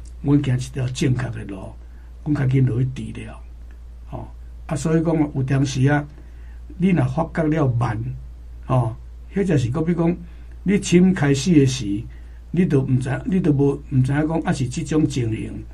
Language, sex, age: Chinese, male, 60-79